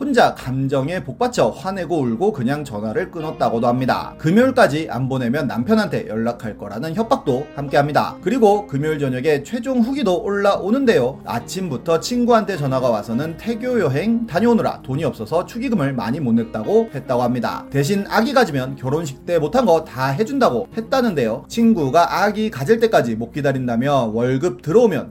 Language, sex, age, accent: Korean, male, 30-49, native